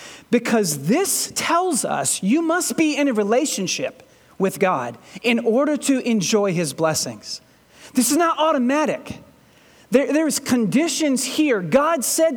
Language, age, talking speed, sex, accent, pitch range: English, 40-59, 130 wpm, male, American, 230-315 Hz